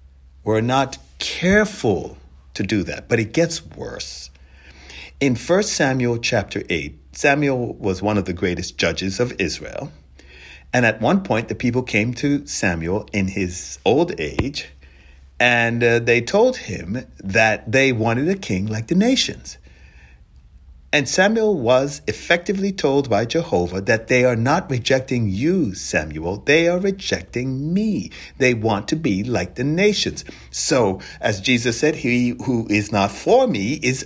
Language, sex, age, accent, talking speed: English, male, 60-79, American, 150 wpm